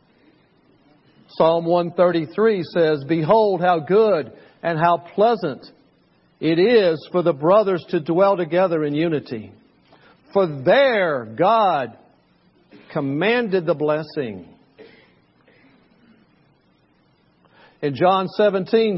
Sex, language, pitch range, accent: male, English, 155-210 Hz, American